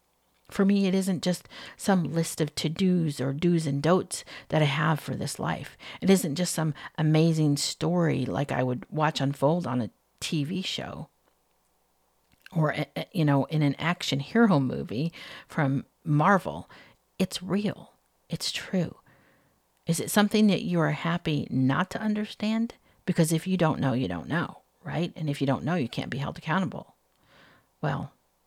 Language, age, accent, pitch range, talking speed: English, 50-69, American, 140-175 Hz, 165 wpm